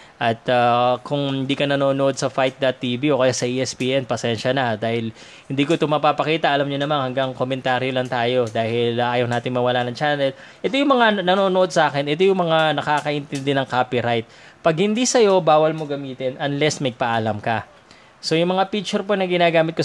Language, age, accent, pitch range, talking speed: Filipino, 20-39, native, 125-160 Hz, 190 wpm